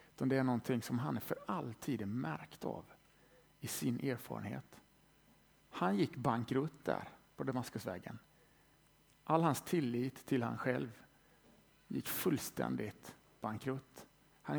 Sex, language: male, Swedish